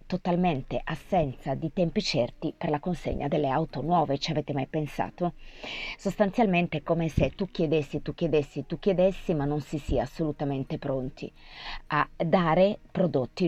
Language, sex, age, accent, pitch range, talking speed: Italian, female, 30-49, native, 135-190 Hz, 150 wpm